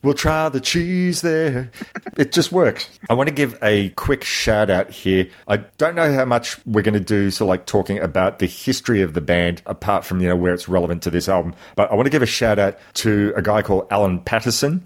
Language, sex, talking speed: English, male, 235 wpm